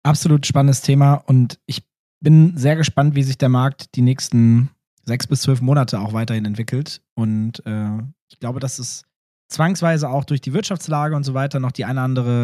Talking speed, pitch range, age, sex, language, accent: 190 wpm, 120-145 Hz, 20-39, male, German, German